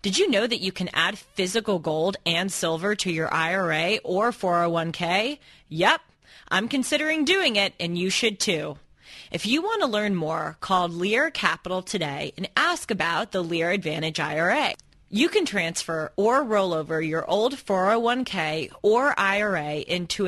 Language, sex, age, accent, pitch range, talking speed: English, female, 30-49, American, 165-245 Hz, 160 wpm